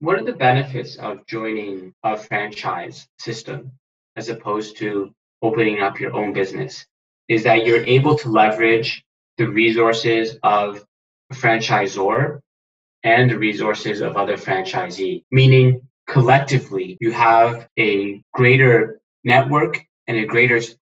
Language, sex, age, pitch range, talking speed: English, male, 20-39, 110-130 Hz, 125 wpm